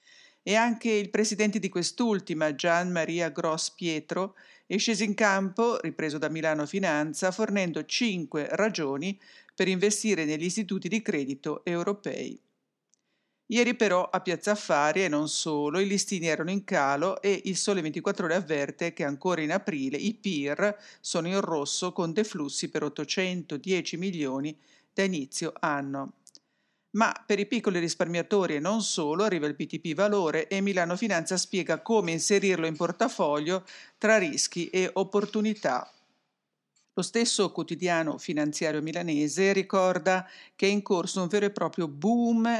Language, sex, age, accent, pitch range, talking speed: English, female, 50-69, Italian, 160-205 Hz, 145 wpm